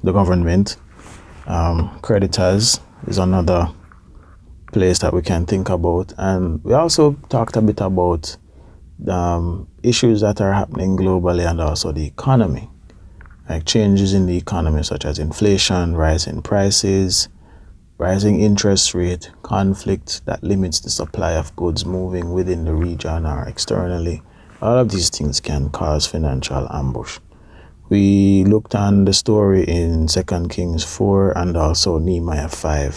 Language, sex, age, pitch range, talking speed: English, male, 30-49, 80-100 Hz, 140 wpm